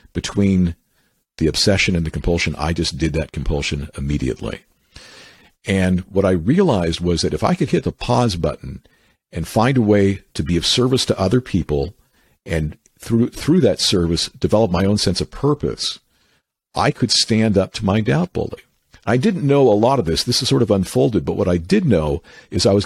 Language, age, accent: English, 50-69, American